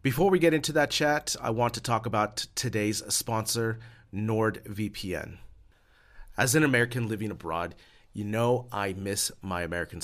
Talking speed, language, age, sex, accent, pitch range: 150 wpm, English, 30-49, male, American, 95-115 Hz